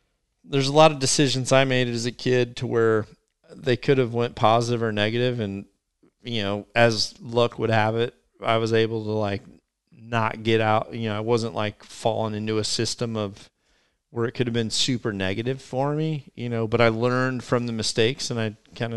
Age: 40-59